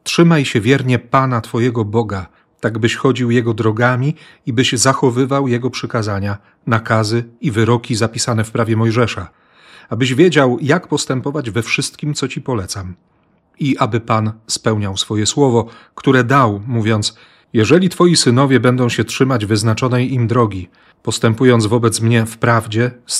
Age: 40-59